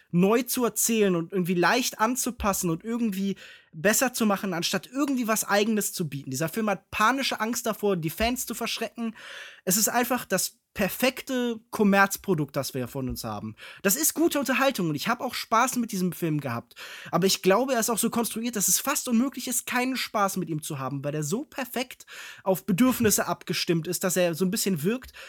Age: 20-39